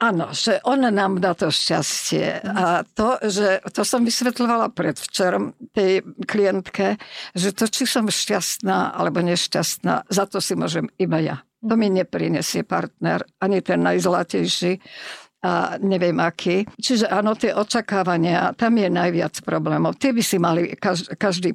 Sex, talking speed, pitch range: female, 145 wpm, 185-215 Hz